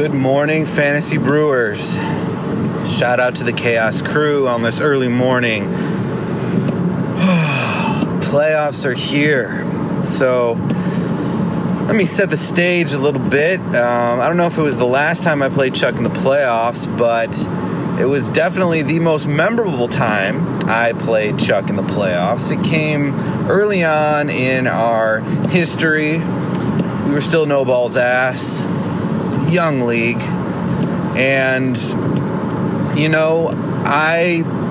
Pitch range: 135-175 Hz